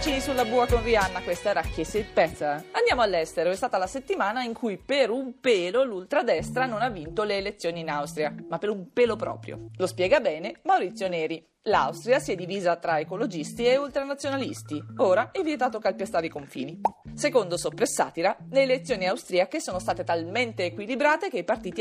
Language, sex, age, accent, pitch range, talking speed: Italian, female, 30-49, native, 170-250 Hz, 175 wpm